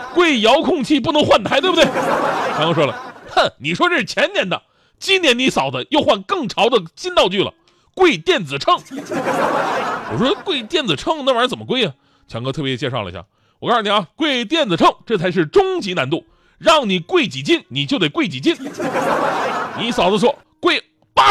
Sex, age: male, 30-49